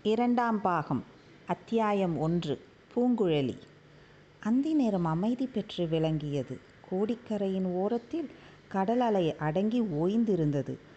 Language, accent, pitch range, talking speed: Tamil, native, 165-215 Hz, 80 wpm